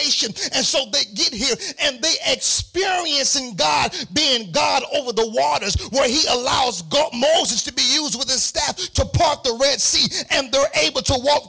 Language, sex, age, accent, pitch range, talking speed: English, male, 40-59, American, 235-310 Hz, 185 wpm